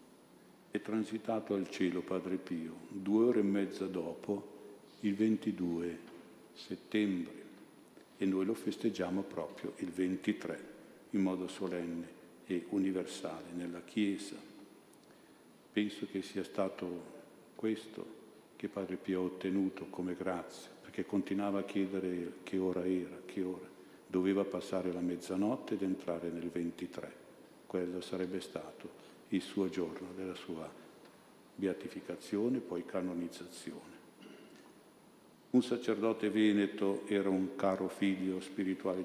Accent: native